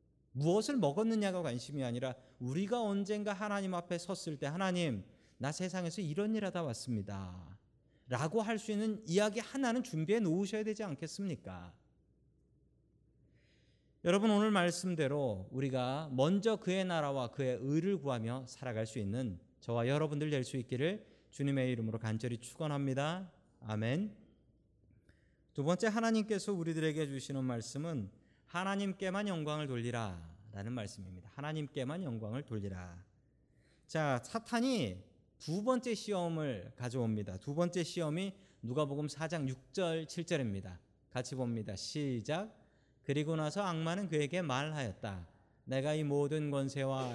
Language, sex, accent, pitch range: Korean, male, native, 120-175 Hz